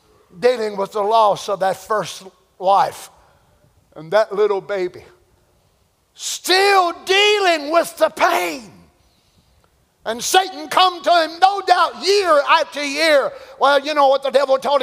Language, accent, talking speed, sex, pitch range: English, American, 140 wpm, male, 225-330 Hz